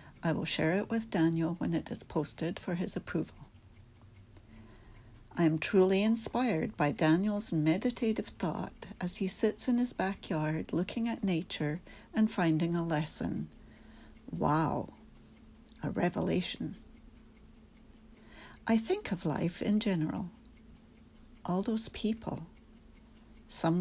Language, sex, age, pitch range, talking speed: English, female, 60-79, 165-225 Hz, 120 wpm